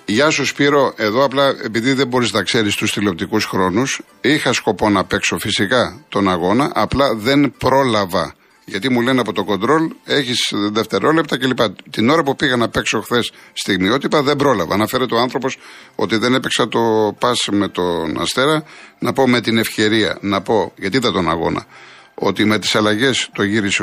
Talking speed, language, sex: 180 wpm, Greek, male